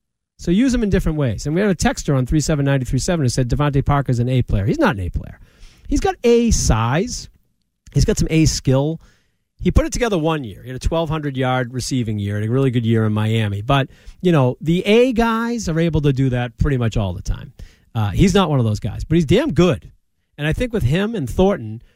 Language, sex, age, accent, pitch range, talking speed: English, male, 40-59, American, 115-170 Hz, 240 wpm